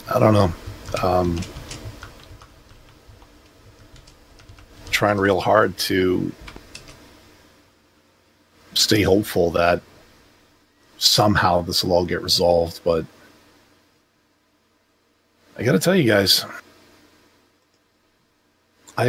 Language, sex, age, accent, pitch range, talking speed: English, male, 40-59, American, 90-105 Hz, 75 wpm